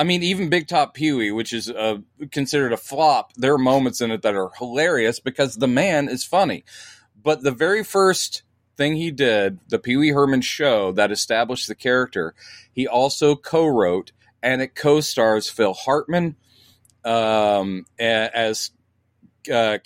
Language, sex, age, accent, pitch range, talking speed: English, male, 40-59, American, 115-155 Hz, 155 wpm